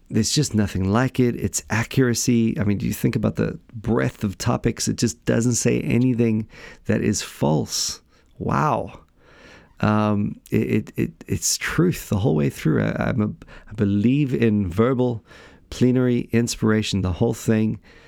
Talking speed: 160 wpm